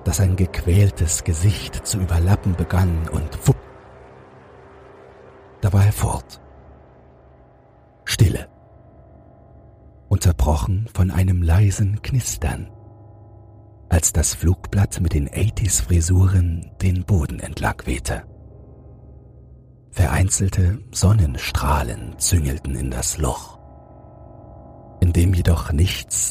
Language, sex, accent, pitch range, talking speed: German, male, German, 80-105 Hz, 95 wpm